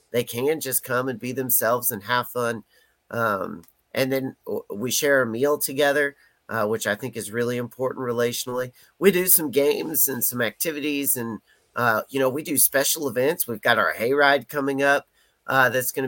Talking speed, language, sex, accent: 190 wpm, English, male, American